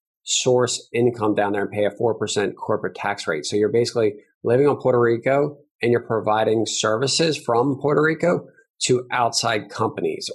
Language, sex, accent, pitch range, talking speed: English, male, American, 100-120 Hz, 160 wpm